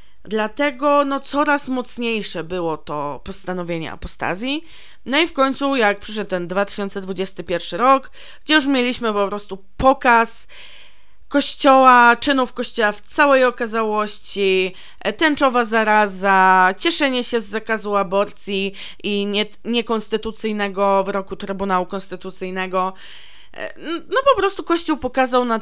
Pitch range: 190-245 Hz